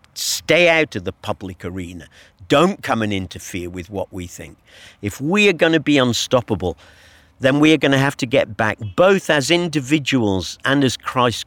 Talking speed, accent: 190 wpm, British